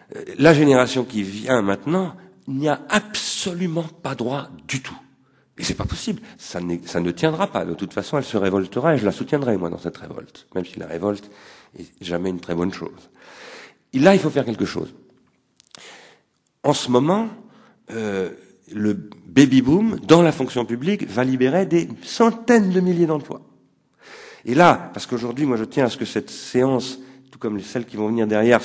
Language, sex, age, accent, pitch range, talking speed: French, male, 50-69, French, 105-160 Hz, 185 wpm